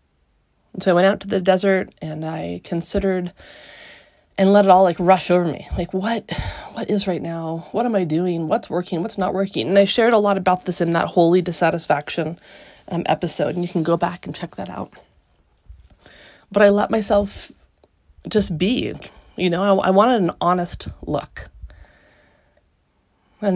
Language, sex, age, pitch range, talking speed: English, female, 30-49, 165-190 Hz, 180 wpm